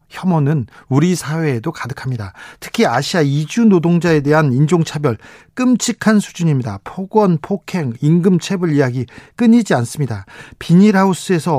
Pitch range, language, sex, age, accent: 145-190 Hz, Korean, male, 40-59, native